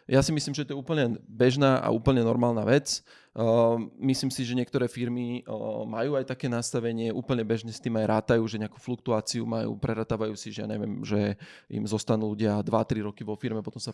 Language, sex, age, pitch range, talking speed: Slovak, male, 20-39, 110-125 Hz, 200 wpm